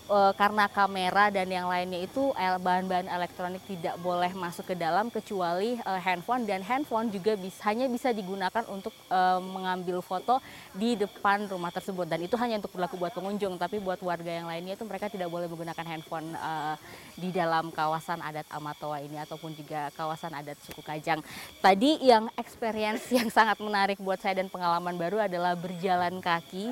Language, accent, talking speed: Indonesian, native, 170 wpm